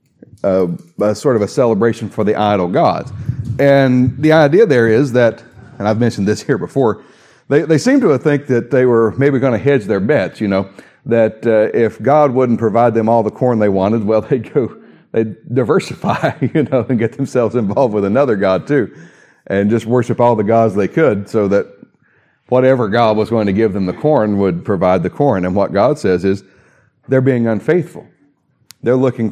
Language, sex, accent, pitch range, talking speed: English, male, American, 100-125 Hz, 200 wpm